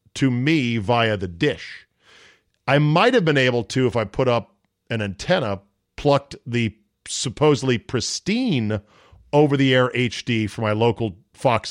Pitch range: 105-130 Hz